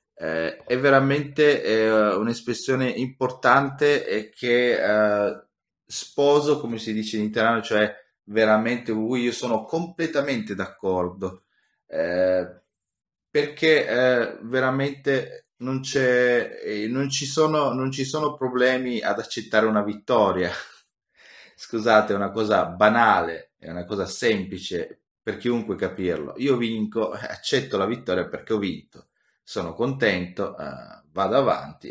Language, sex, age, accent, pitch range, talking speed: Italian, male, 30-49, native, 90-130 Hz, 115 wpm